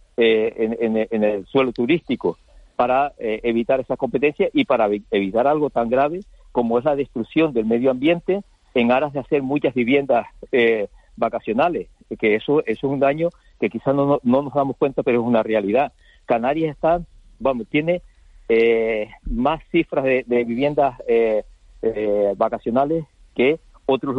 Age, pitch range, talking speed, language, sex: 50-69, 120-160 Hz, 160 wpm, Spanish, male